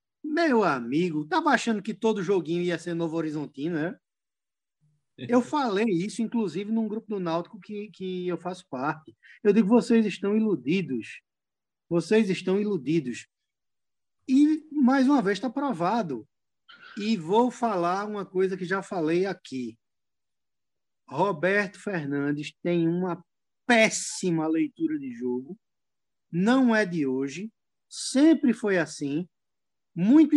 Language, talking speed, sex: Portuguese, 125 wpm, male